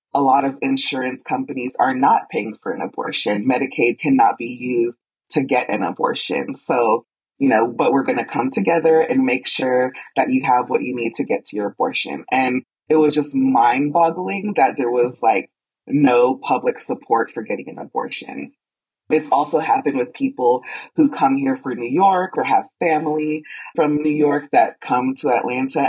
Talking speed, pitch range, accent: 185 wpm, 125-205 Hz, American